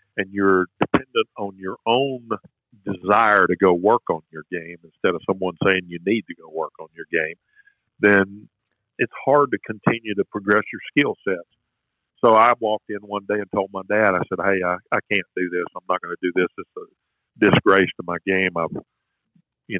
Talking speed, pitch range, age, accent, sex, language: 205 wpm, 85-100 Hz, 50-69, American, male, English